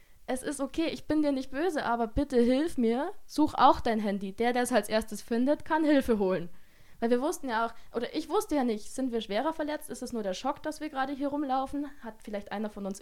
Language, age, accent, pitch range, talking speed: German, 20-39, German, 205-265 Hz, 250 wpm